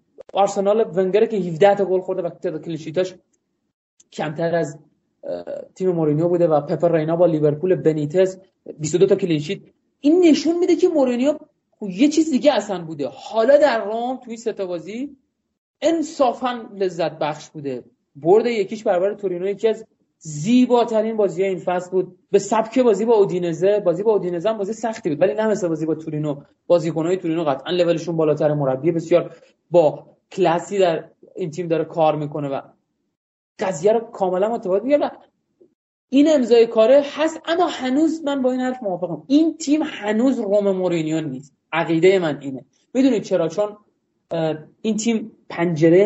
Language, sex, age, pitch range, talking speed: Persian, male, 30-49, 165-225 Hz, 155 wpm